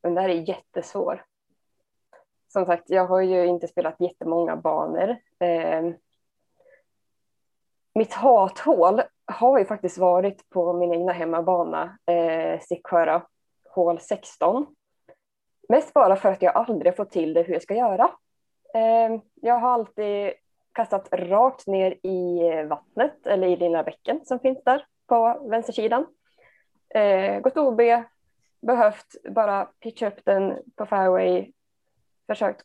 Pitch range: 175-240 Hz